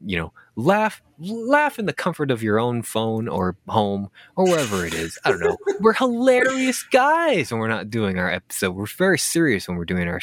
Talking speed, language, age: 210 wpm, English, 20-39